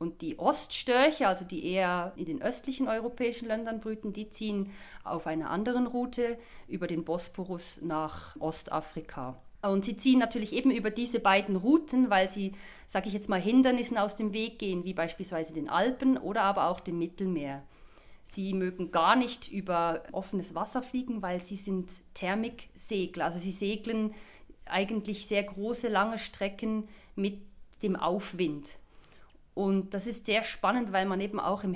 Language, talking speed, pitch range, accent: German, 160 wpm, 185-230 Hz, German